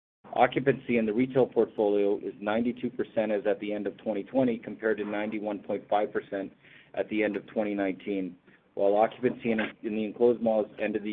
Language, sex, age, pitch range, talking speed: English, male, 40-59, 100-120 Hz, 165 wpm